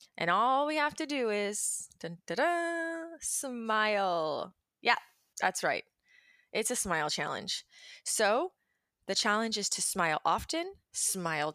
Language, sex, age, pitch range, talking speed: English, female, 20-39, 185-285 Hz, 120 wpm